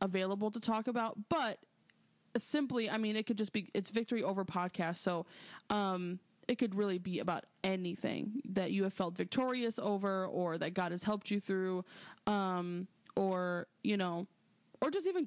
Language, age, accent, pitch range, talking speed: English, 20-39, American, 185-215 Hz, 175 wpm